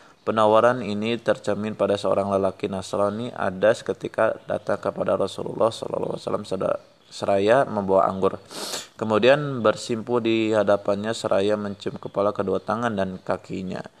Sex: male